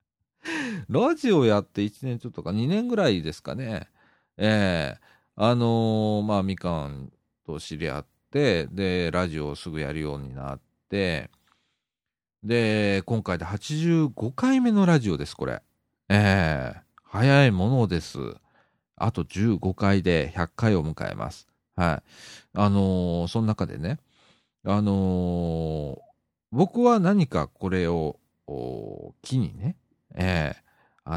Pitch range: 80-120 Hz